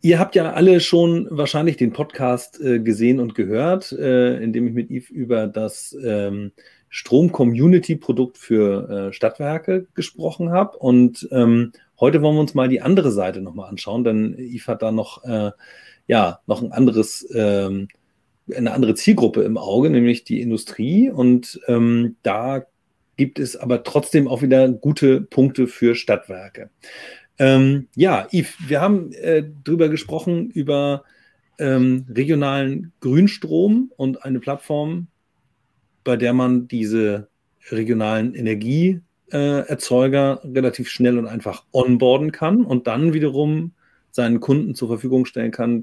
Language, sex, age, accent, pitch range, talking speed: German, male, 30-49, German, 115-150 Hz, 130 wpm